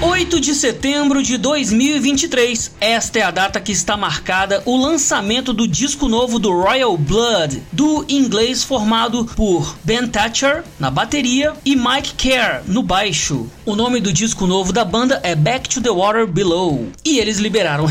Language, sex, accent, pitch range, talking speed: English, male, Brazilian, 185-265 Hz, 165 wpm